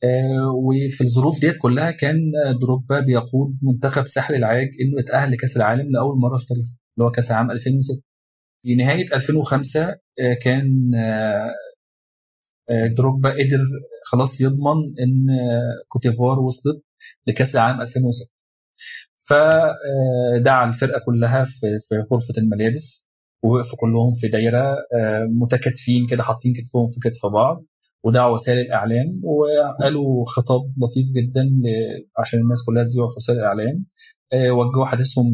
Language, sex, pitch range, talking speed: Arabic, male, 120-135 Hz, 120 wpm